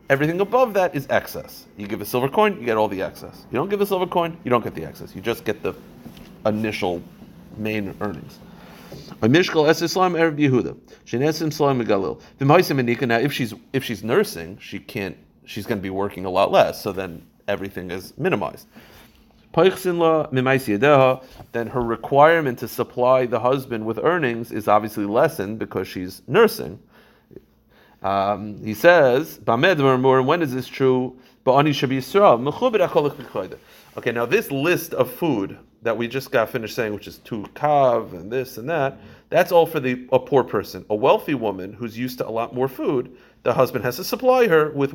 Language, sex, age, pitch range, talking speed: English, male, 40-59, 110-150 Hz, 155 wpm